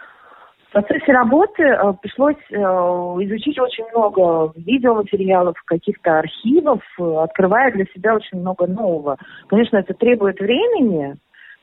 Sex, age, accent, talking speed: female, 30-49, native, 105 wpm